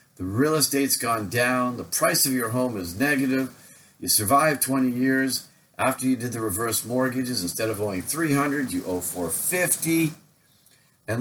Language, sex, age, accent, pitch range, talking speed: English, male, 50-69, American, 100-135 Hz, 160 wpm